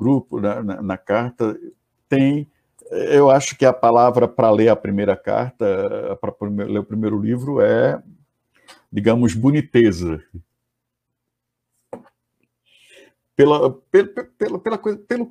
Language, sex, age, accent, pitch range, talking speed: Portuguese, male, 60-79, Brazilian, 105-145 Hz, 100 wpm